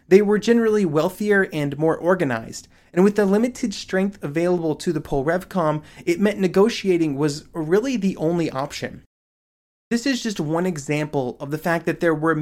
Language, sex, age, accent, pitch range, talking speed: English, male, 30-49, American, 160-200 Hz, 170 wpm